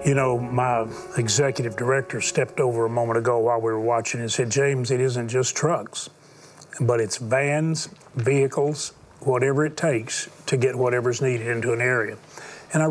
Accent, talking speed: American, 170 wpm